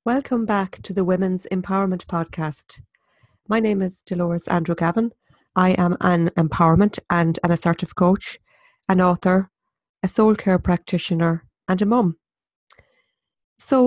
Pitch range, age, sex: 180-225 Hz, 40-59, female